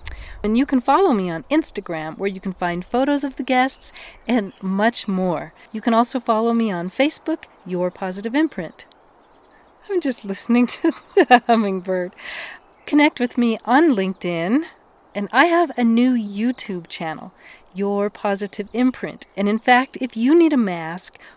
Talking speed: 160 wpm